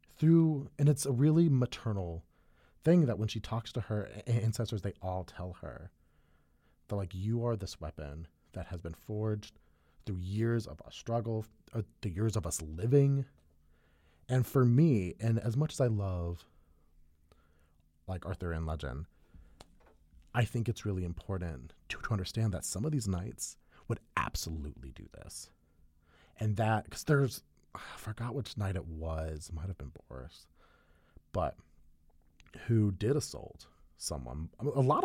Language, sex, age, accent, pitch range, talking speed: English, male, 30-49, American, 80-110 Hz, 160 wpm